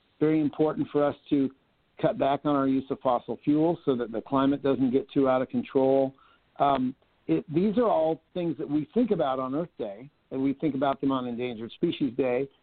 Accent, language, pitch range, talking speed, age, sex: American, English, 135-165 Hz, 210 wpm, 50-69, male